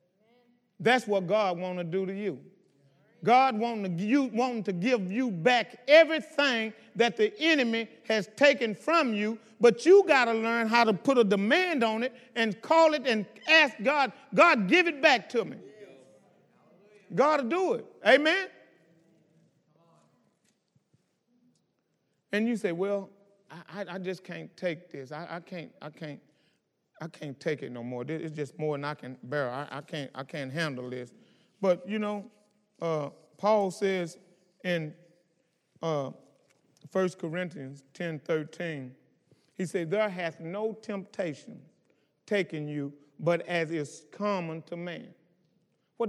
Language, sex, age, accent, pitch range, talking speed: English, male, 40-59, American, 165-230 Hz, 150 wpm